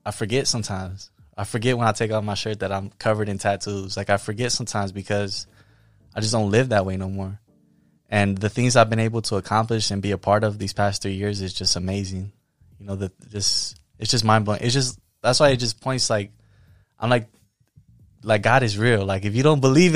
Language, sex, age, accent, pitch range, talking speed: English, male, 20-39, American, 100-120 Hz, 230 wpm